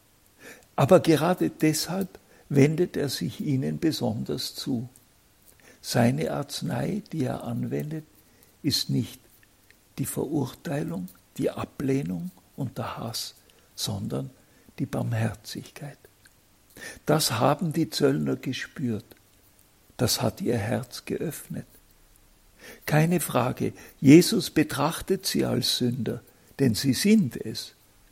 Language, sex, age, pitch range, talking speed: German, male, 60-79, 105-150 Hz, 100 wpm